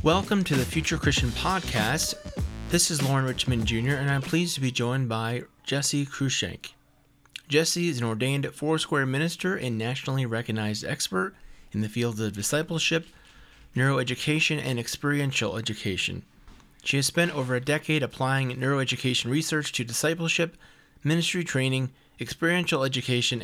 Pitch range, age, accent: 120-150 Hz, 30-49, American